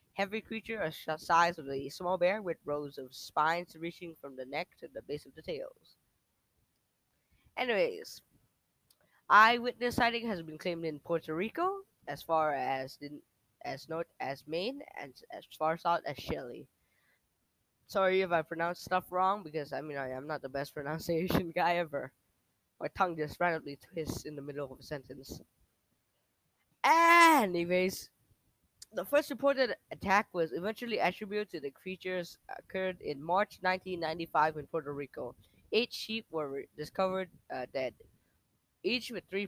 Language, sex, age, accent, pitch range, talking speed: English, female, 10-29, American, 150-205 Hz, 155 wpm